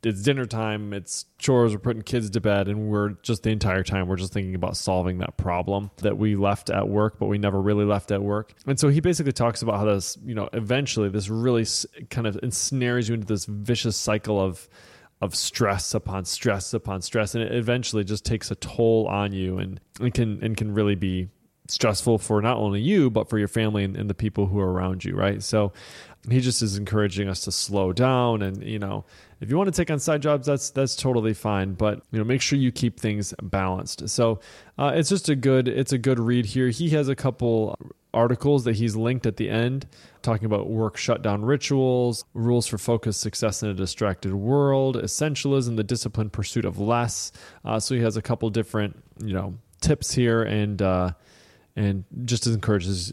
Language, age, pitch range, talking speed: English, 20-39, 100-120 Hz, 210 wpm